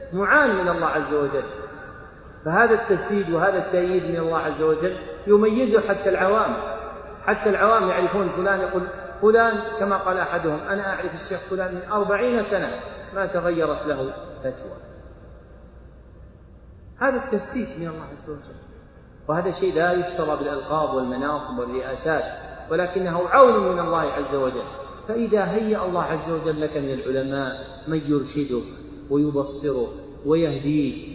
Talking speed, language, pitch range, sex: 130 wpm, Arabic, 135-185 Hz, male